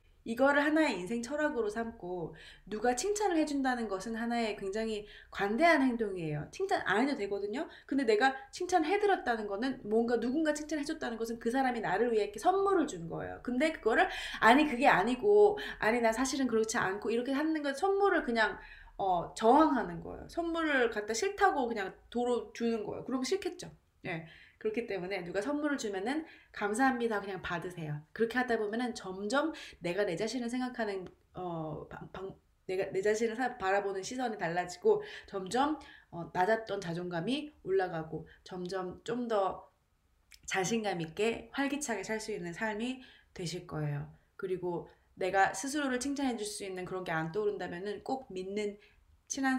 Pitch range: 195-275 Hz